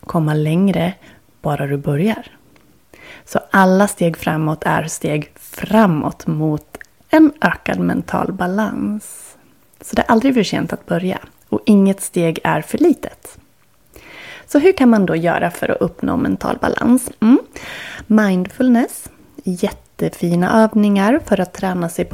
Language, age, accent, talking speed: Swedish, 30-49, native, 135 wpm